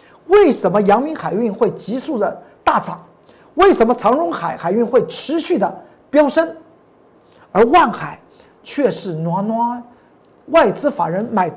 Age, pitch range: 50-69, 185-290 Hz